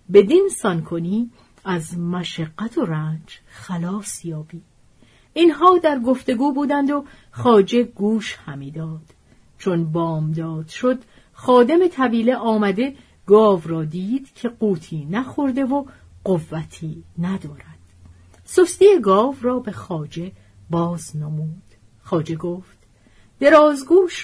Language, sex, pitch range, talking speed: Persian, female, 160-260 Hz, 105 wpm